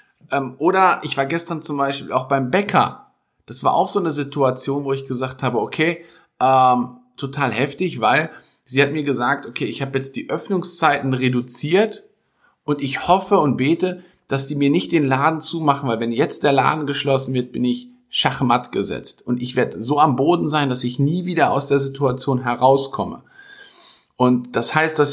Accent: German